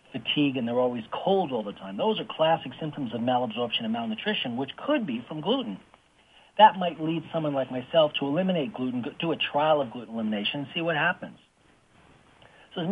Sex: male